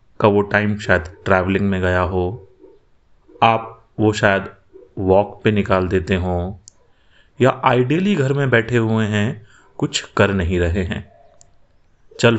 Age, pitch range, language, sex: 30-49, 95-125 Hz, English, male